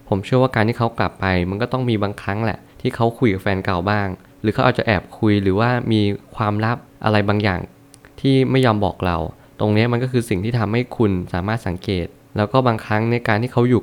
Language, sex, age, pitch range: Thai, male, 20-39, 100-125 Hz